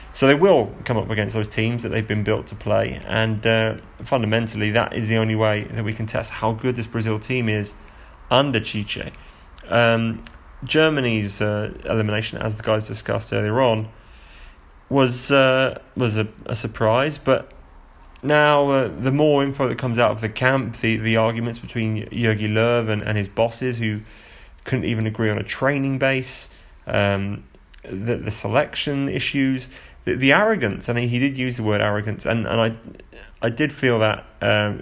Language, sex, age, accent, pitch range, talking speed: English, male, 30-49, British, 105-120 Hz, 180 wpm